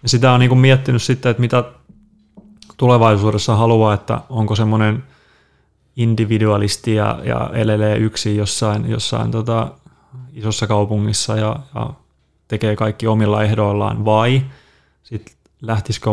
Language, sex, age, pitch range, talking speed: Finnish, male, 20-39, 105-115 Hz, 115 wpm